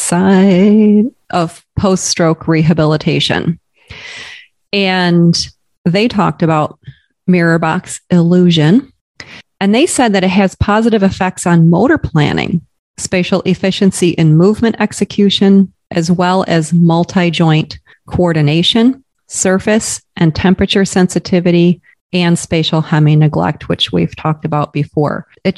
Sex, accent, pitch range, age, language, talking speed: female, American, 155-195 Hz, 30-49, English, 105 wpm